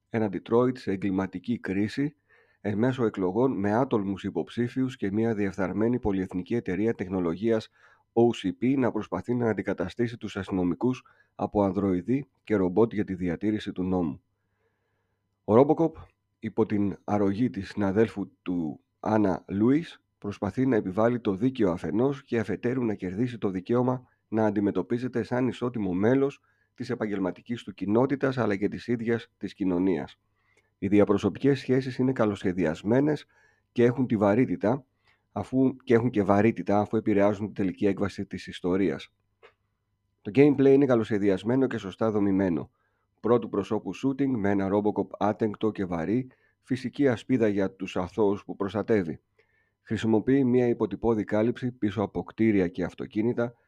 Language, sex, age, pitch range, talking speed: Greek, male, 40-59, 100-120 Hz, 140 wpm